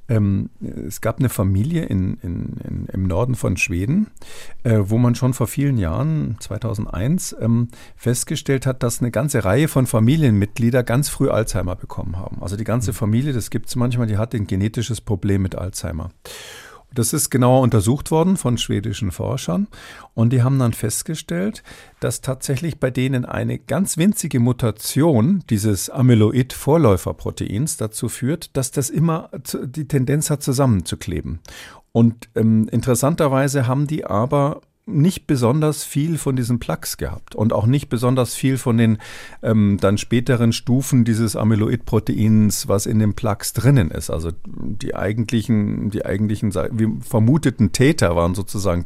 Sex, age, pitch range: male, 50-69, 105-135 Hz